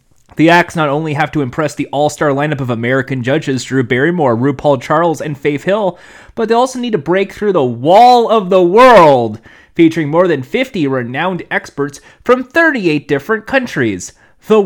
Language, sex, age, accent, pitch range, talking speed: English, male, 30-49, American, 135-200 Hz, 175 wpm